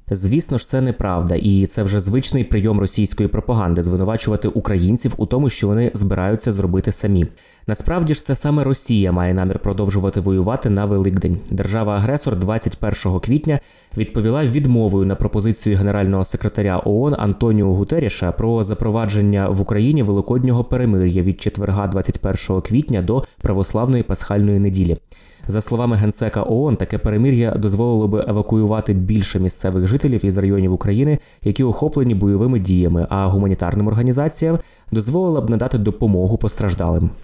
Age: 20-39